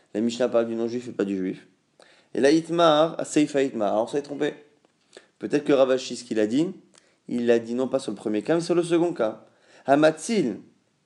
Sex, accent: male, French